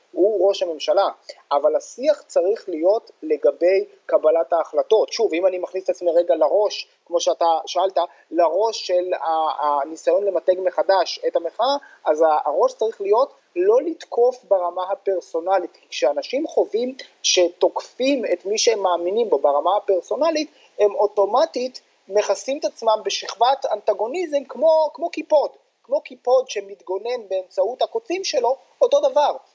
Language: Hebrew